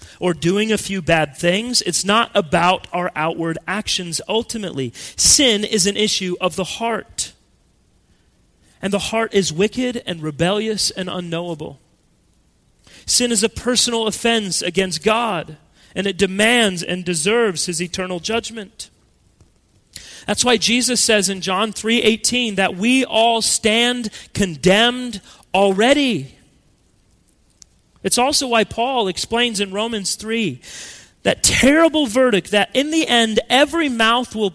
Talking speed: 130 wpm